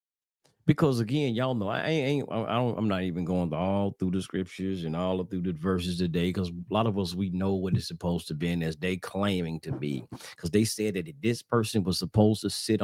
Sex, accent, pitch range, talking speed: male, American, 85-115 Hz, 250 wpm